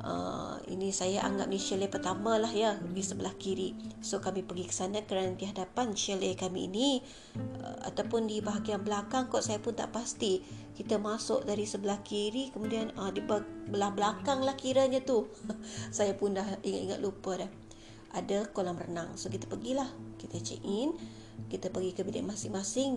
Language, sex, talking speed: Malay, female, 170 wpm